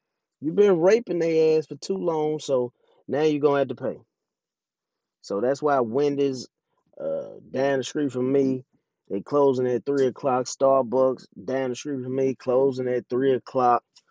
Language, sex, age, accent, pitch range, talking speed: English, male, 20-39, American, 110-145 Hz, 175 wpm